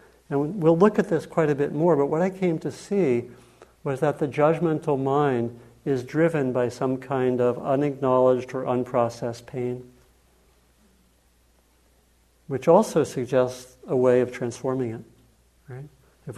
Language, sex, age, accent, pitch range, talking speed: English, male, 60-79, American, 120-145 Hz, 145 wpm